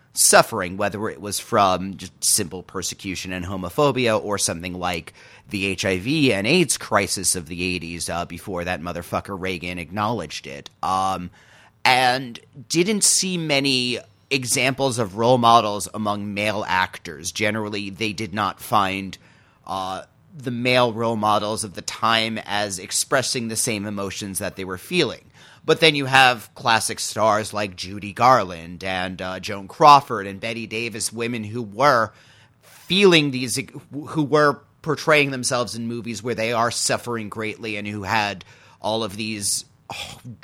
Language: English